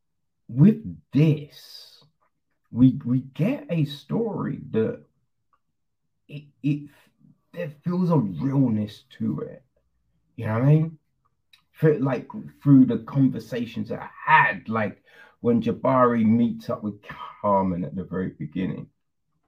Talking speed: 125 wpm